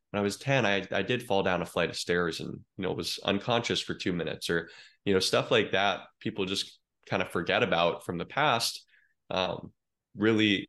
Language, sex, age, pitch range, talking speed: English, male, 20-39, 85-100 Hz, 220 wpm